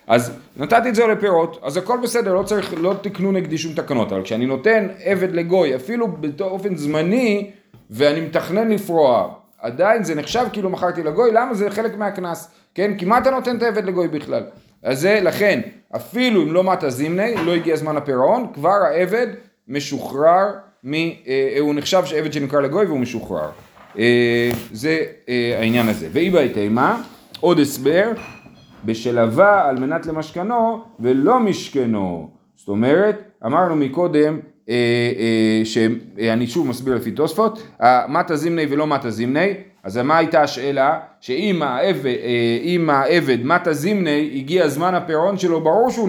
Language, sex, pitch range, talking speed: Hebrew, male, 135-200 Hz, 140 wpm